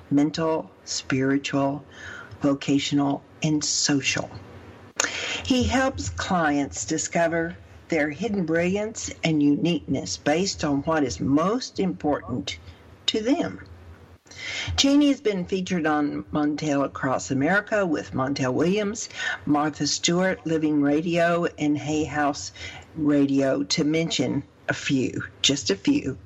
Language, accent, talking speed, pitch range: English, American, 110 wpm, 140-170 Hz